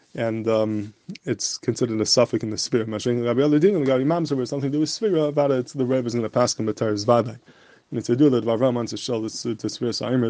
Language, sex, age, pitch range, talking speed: English, male, 20-39, 115-135 Hz, 185 wpm